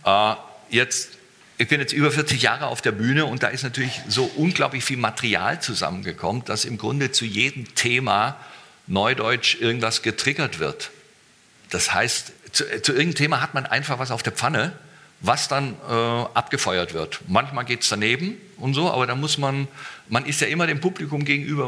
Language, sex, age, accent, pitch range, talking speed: German, male, 50-69, German, 110-145 Hz, 170 wpm